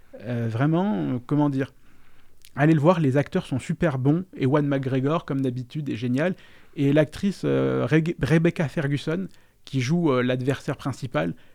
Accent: French